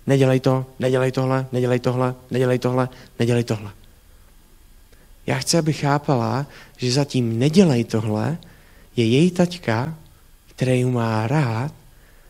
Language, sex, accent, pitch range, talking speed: Czech, male, native, 110-145 Hz, 115 wpm